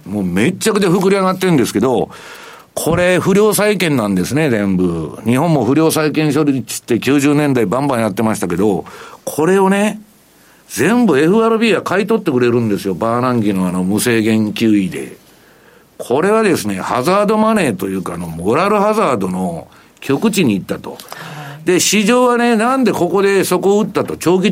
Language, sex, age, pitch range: Japanese, male, 60-79, 130-200 Hz